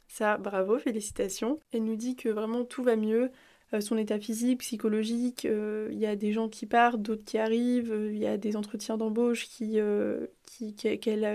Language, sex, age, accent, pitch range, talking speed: French, female, 20-39, French, 205-235 Hz, 200 wpm